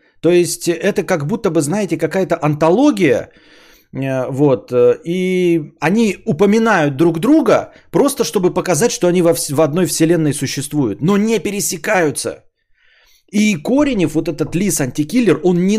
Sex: male